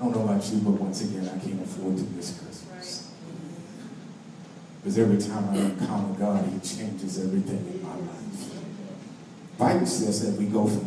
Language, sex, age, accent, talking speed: English, male, 40-59, American, 175 wpm